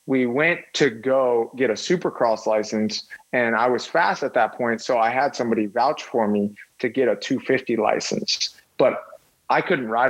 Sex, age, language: male, 30-49, English